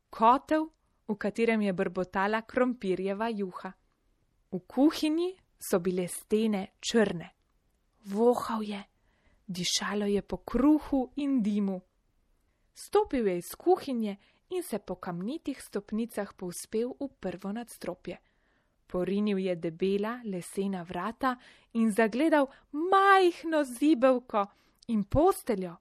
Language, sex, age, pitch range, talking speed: Italian, female, 20-39, 195-245 Hz, 105 wpm